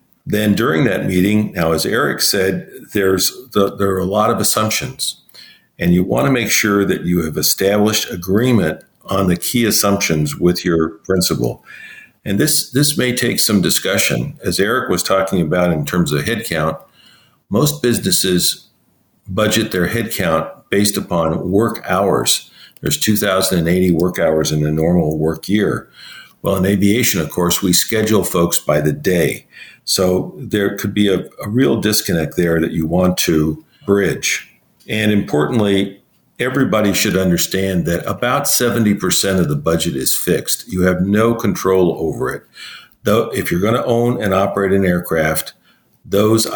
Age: 50-69